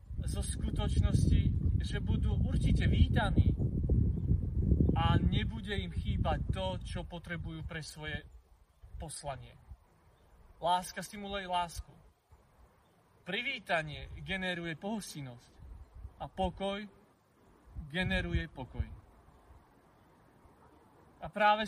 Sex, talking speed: male, 80 wpm